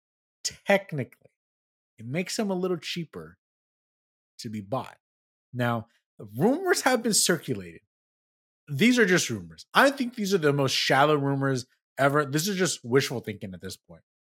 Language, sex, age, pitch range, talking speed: English, male, 30-49, 125-170 Hz, 150 wpm